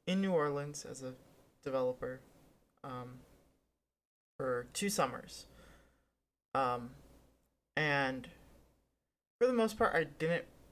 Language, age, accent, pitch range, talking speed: English, 20-39, American, 130-165 Hz, 100 wpm